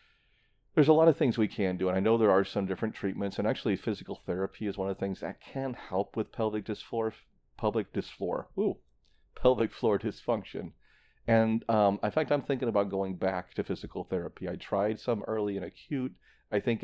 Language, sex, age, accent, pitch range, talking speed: English, male, 40-59, American, 95-125 Hz, 195 wpm